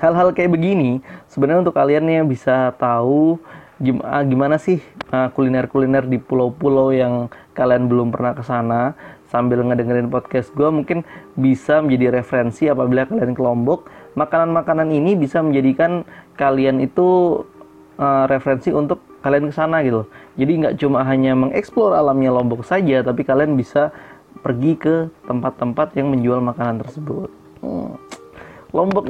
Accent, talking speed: native, 130 wpm